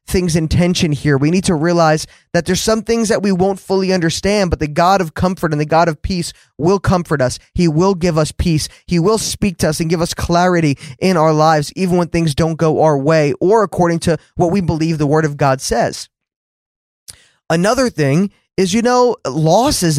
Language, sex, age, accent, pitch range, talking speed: English, male, 20-39, American, 145-185 Hz, 215 wpm